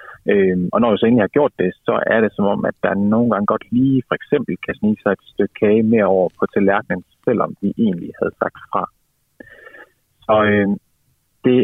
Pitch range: 105-135 Hz